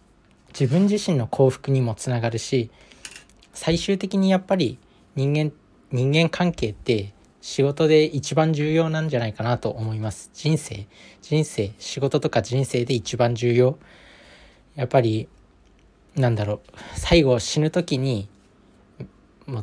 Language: Japanese